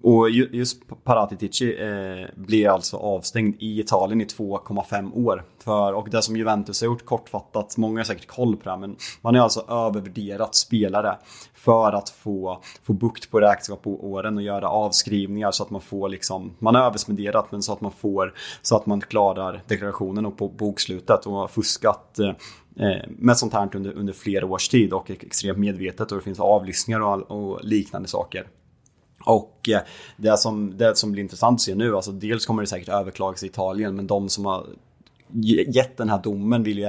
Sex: male